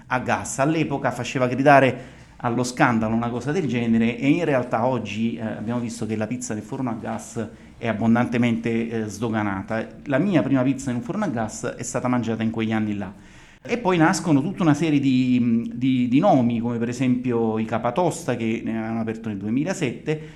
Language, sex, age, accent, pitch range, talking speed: Italian, male, 30-49, native, 115-150 Hz, 195 wpm